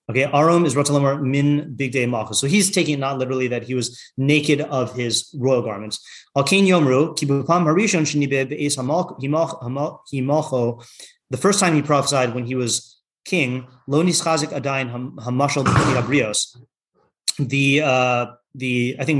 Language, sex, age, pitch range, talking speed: English, male, 30-49, 125-150 Hz, 110 wpm